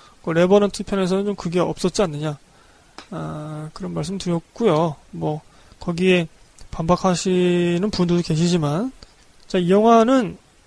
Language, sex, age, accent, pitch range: Korean, male, 20-39, native, 170-210 Hz